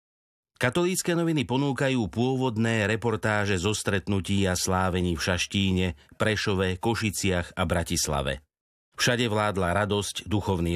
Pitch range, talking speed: 95-120 Hz, 105 wpm